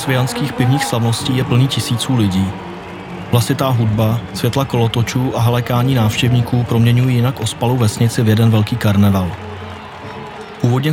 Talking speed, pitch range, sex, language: 125 wpm, 110-130 Hz, male, Czech